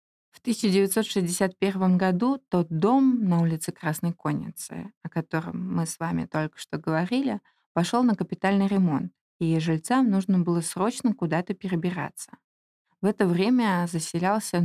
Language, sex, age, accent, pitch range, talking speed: Russian, female, 20-39, native, 170-215 Hz, 130 wpm